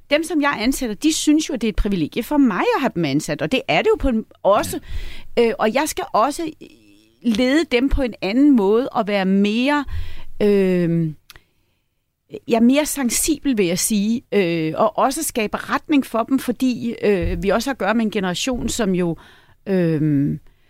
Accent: native